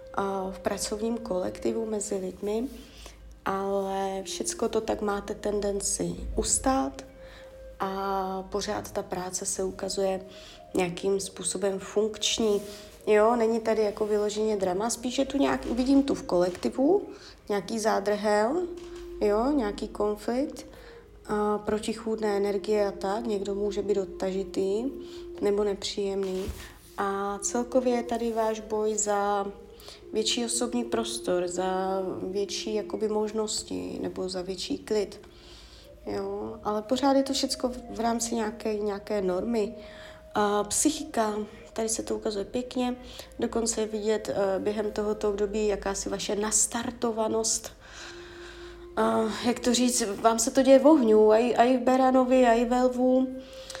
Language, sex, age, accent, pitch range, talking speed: Czech, female, 30-49, native, 195-235 Hz, 130 wpm